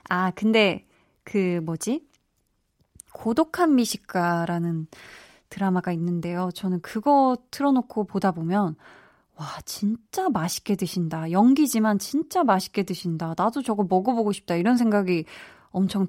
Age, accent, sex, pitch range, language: 20-39, native, female, 185-275 Hz, Korean